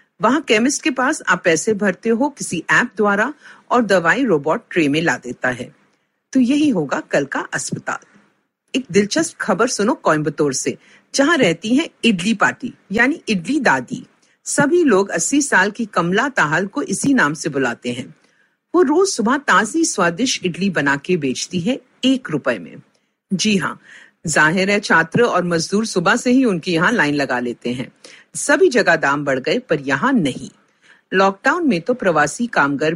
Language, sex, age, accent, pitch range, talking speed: Hindi, female, 50-69, native, 165-255 Hz, 165 wpm